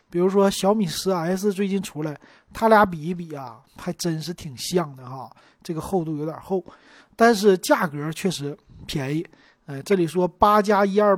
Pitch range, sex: 155-215 Hz, male